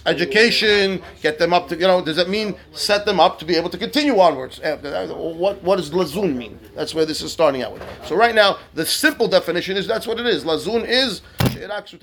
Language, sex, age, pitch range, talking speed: English, male, 30-49, 155-205 Hz, 215 wpm